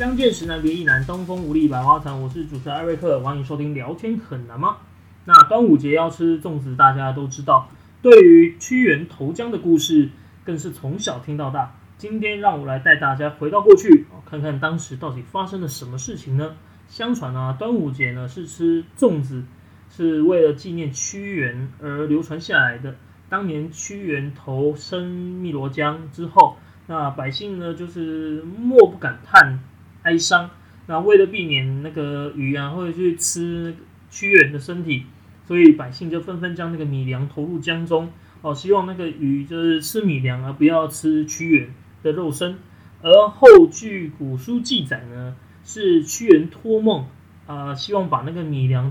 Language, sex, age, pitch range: Chinese, male, 30-49, 140-180 Hz